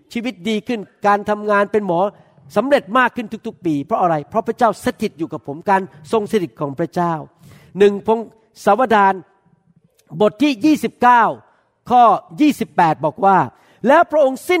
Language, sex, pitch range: Thai, male, 160-225 Hz